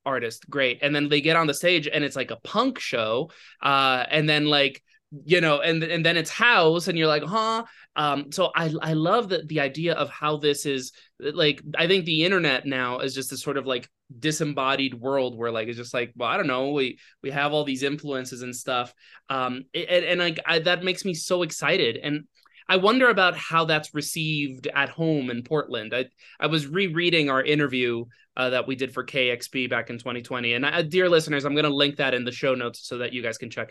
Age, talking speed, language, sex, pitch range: 20-39, 225 wpm, English, male, 125-160 Hz